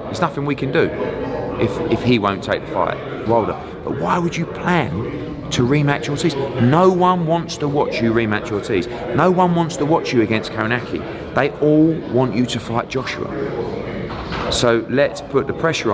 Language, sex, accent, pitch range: English, male, British, 105-140 Hz